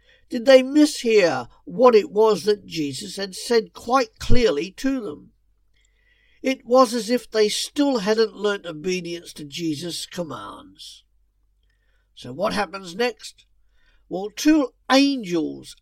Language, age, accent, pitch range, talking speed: English, 50-69, British, 150-245 Hz, 125 wpm